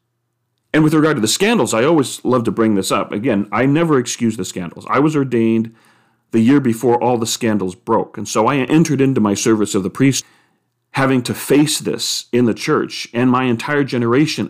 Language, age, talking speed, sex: English, 40-59, 205 wpm, male